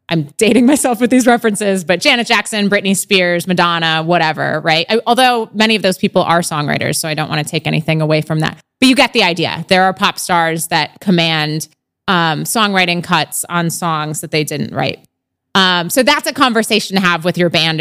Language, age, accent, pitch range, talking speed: English, 20-39, American, 165-220 Hz, 205 wpm